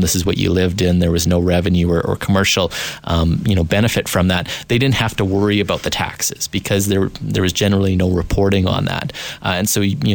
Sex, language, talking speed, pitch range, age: male, English, 240 wpm, 85-100 Hz, 30-49